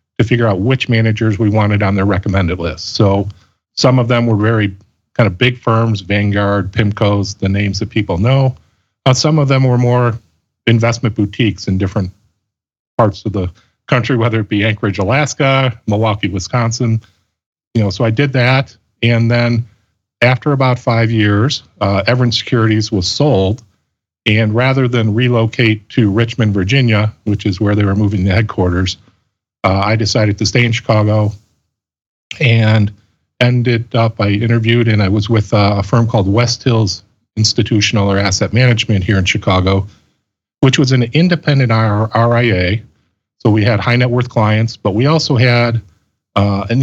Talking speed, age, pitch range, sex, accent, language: 165 wpm, 40-59, 100-120 Hz, male, American, English